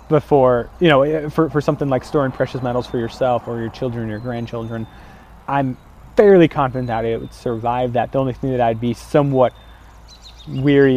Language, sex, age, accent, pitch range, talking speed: English, male, 30-49, American, 115-140 Hz, 180 wpm